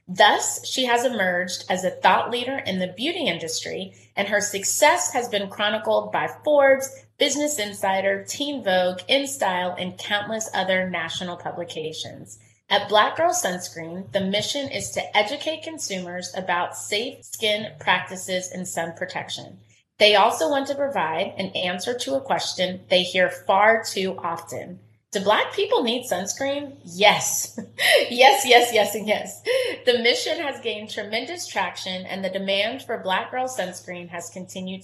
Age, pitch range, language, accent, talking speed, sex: 30-49, 180-245 Hz, English, American, 150 wpm, female